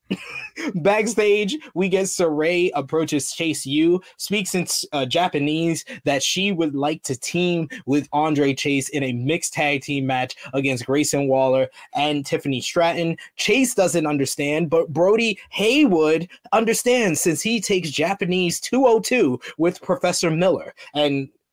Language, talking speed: English, 135 wpm